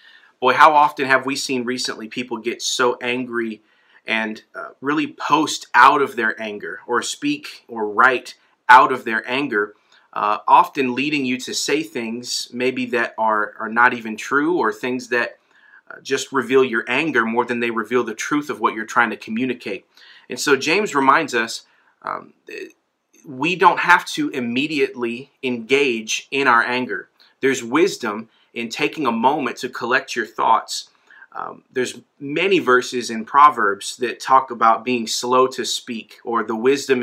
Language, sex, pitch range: English, male, 120-140 Hz